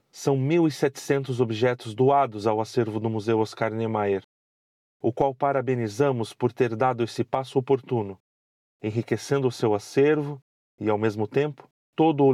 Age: 40-59